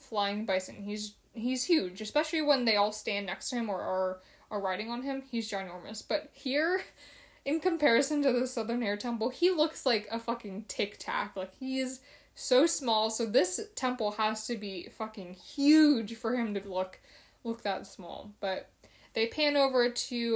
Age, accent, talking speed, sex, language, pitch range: 10-29, American, 180 wpm, female, English, 205-255 Hz